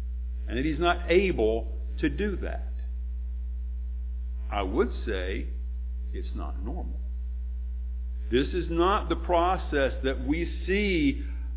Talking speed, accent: 115 wpm, American